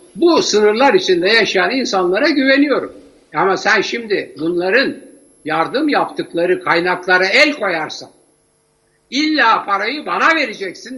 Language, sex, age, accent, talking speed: Turkish, male, 60-79, native, 105 wpm